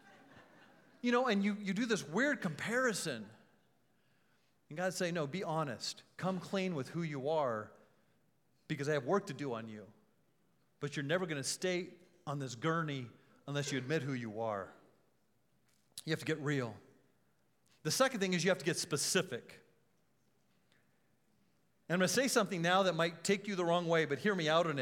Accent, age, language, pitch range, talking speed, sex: American, 40-59, English, 155-210 Hz, 185 wpm, male